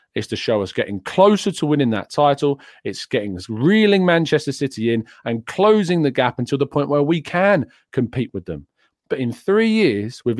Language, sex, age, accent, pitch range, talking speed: English, male, 40-59, British, 110-150 Hz, 200 wpm